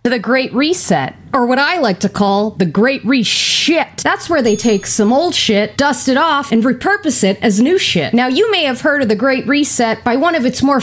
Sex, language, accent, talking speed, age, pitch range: female, Dutch, American, 235 wpm, 30-49, 225-290 Hz